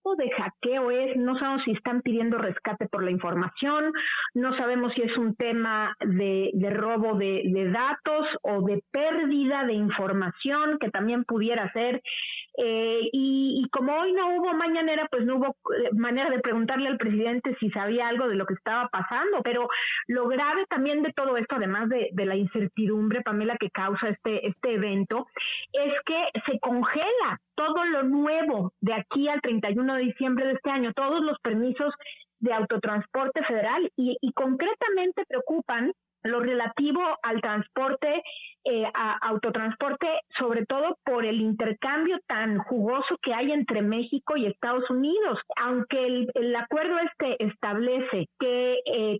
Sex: female